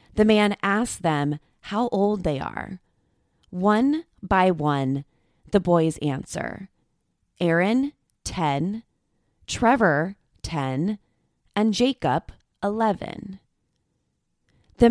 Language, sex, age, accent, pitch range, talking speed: English, female, 20-39, American, 155-215 Hz, 90 wpm